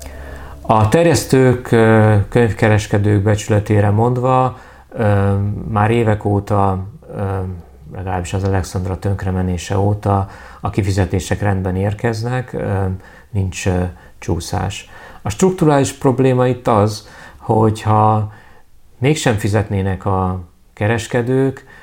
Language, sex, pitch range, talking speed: Hungarian, male, 90-110 Hz, 80 wpm